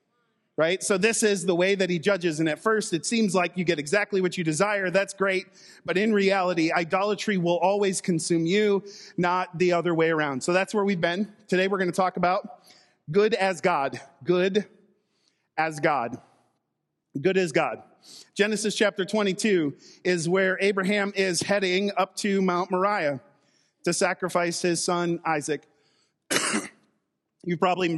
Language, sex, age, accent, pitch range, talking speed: English, male, 40-59, American, 165-195 Hz, 160 wpm